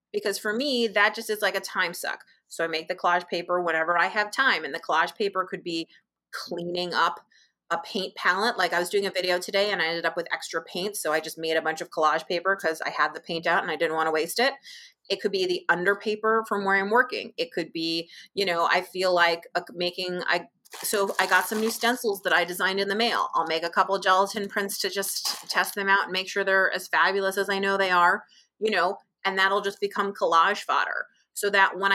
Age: 30-49